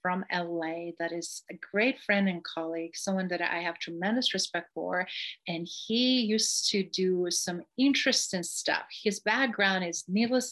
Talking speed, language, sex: 160 wpm, English, female